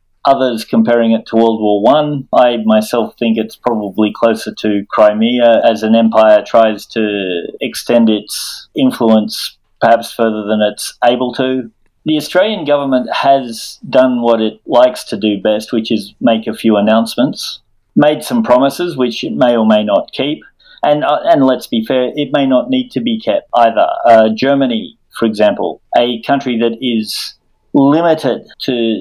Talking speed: 170 wpm